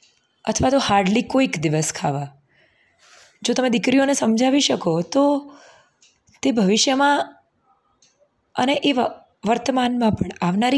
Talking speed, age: 100 wpm, 20-39